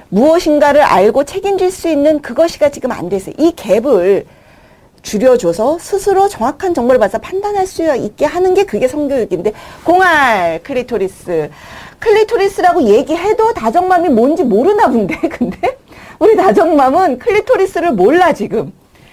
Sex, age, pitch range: female, 40-59, 205-340 Hz